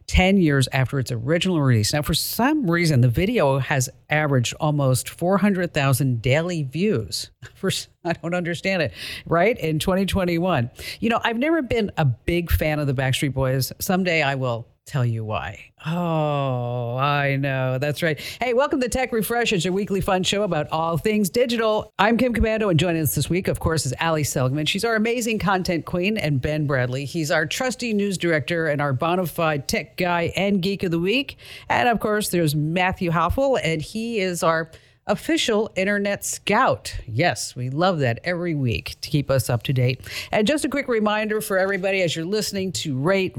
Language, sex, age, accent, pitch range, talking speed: English, female, 50-69, American, 140-205 Hz, 190 wpm